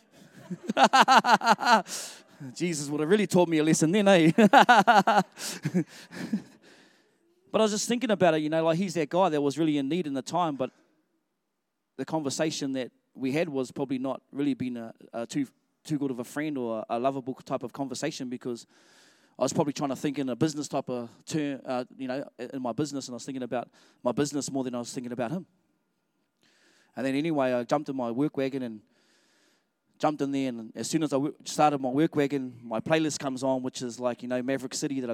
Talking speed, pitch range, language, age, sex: 210 wpm, 125-155 Hz, English, 20-39, male